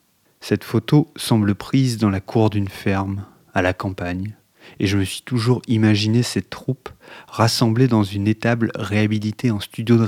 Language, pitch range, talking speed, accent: French, 100-115 Hz, 165 wpm, French